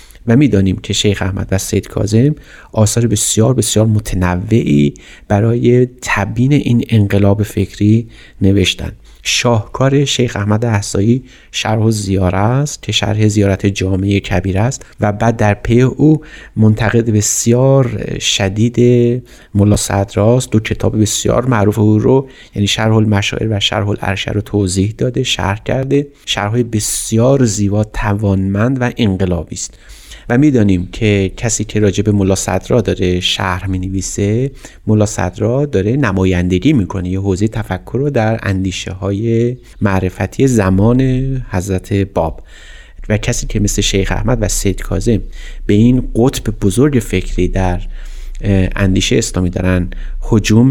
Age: 30-49